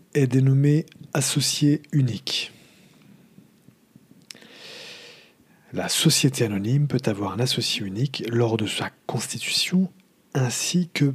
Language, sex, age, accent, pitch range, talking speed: English, male, 40-59, French, 110-145 Hz, 95 wpm